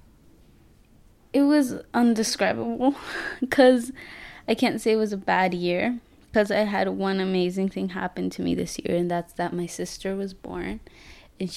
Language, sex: English, female